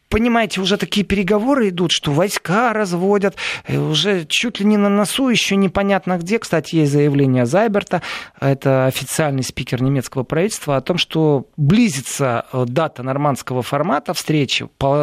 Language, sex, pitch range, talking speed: Russian, male, 145-200 Hz, 135 wpm